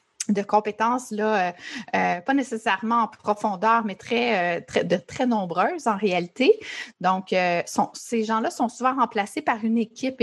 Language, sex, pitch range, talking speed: English, female, 185-235 Hz, 175 wpm